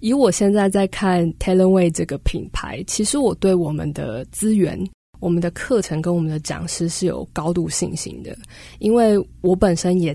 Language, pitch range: Chinese, 160-190 Hz